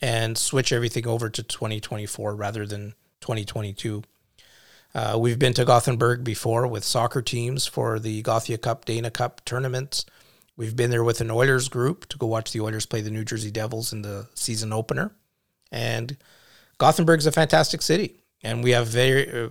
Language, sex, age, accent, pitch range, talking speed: English, male, 40-59, American, 110-130 Hz, 175 wpm